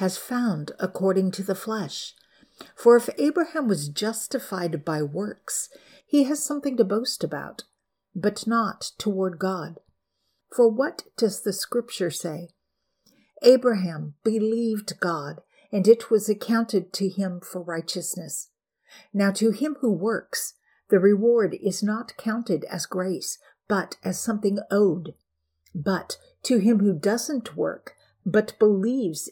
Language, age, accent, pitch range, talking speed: English, 50-69, American, 175-220 Hz, 130 wpm